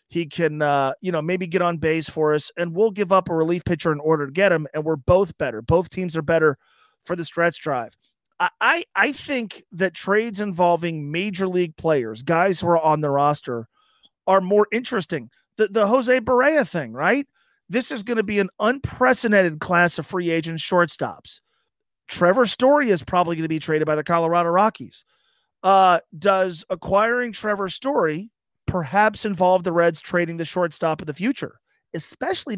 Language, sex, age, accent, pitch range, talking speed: English, male, 30-49, American, 165-215 Hz, 185 wpm